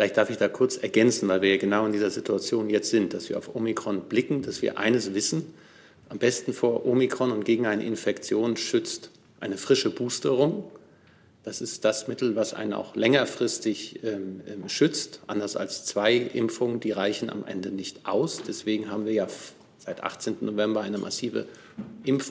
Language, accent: German, German